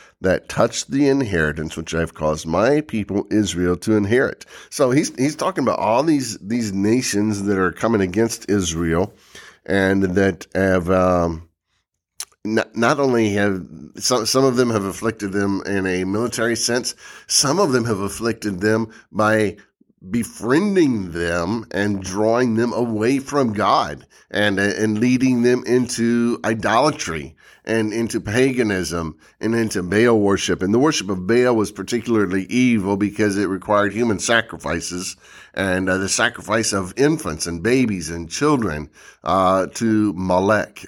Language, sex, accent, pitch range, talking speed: English, male, American, 95-115 Hz, 145 wpm